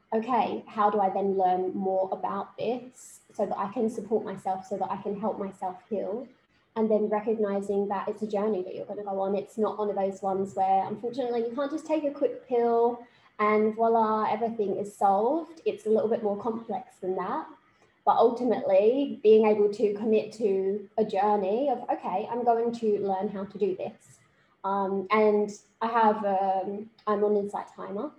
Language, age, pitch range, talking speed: English, 20-39, 195-225 Hz, 190 wpm